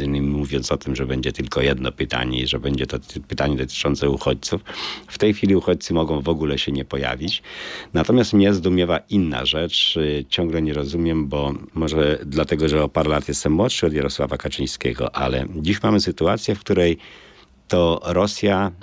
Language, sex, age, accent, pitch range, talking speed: Polish, male, 50-69, native, 70-90 Hz, 170 wpm